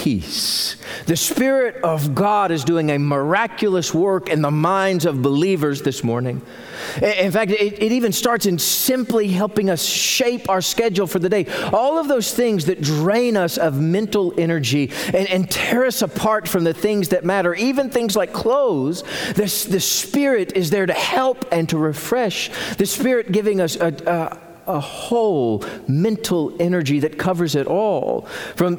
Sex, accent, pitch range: male, American, 165-220 Hz